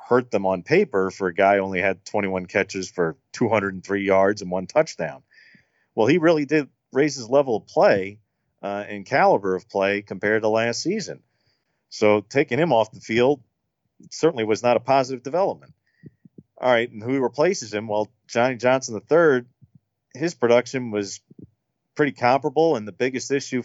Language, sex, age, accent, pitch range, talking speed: English, male, 40-59, American, 100-120 Hz, 175 wpm